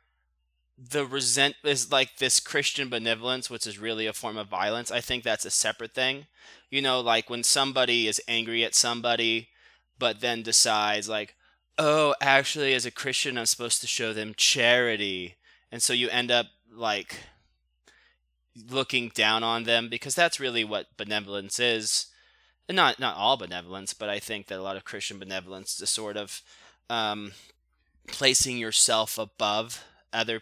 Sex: male